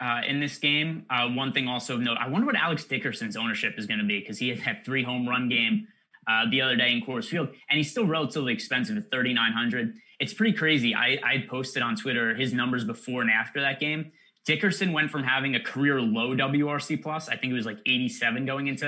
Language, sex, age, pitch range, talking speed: English, male, 20-39, 125-170 Hz, 235 wpm